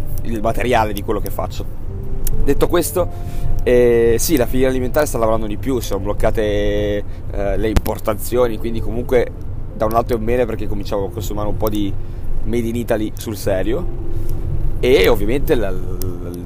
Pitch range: 105-125 Hz